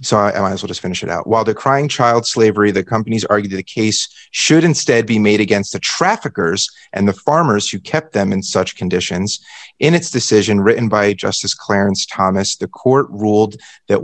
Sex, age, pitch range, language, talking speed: male, 30-49, 100-115 Hz, English, 200 wpm